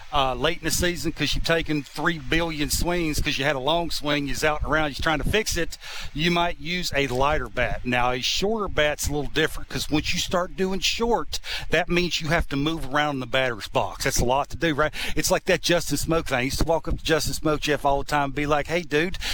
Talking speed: 260 wpm